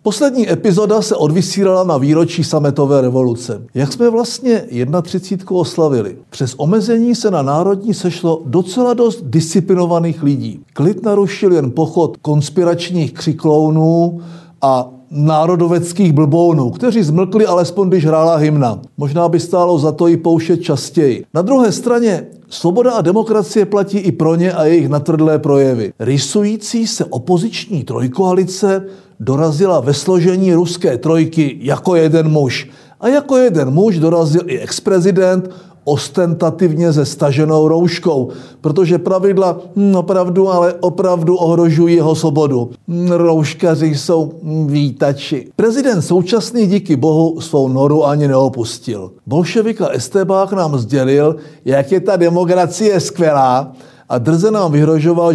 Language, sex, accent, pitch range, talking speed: Czech, male, native, 150-190 Hz, 130 wpm